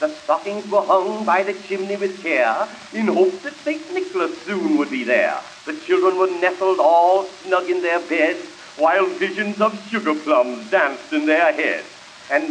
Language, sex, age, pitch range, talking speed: English, male, 60-79, 215-310 Hz, 175 wpm